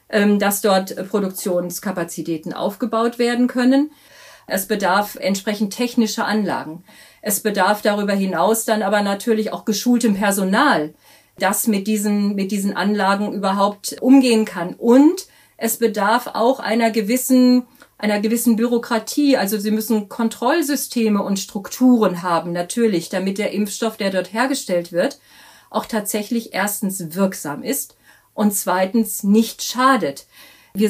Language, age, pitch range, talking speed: German, 50-69, 195-235 Hz, 125 wpm